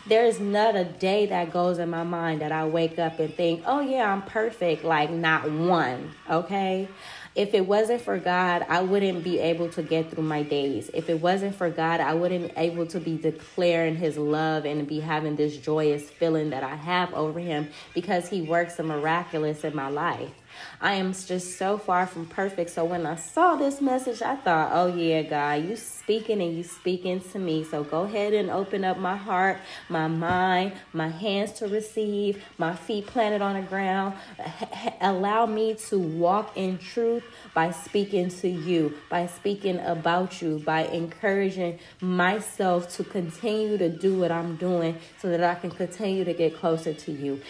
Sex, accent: female, American